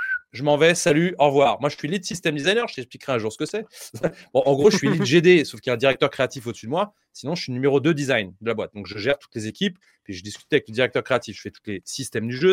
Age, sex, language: 30-49, male, French